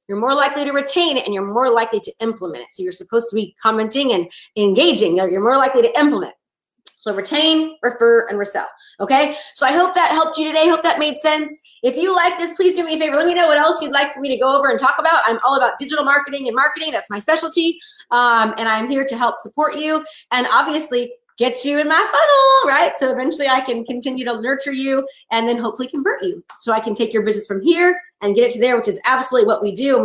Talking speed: 250 wpm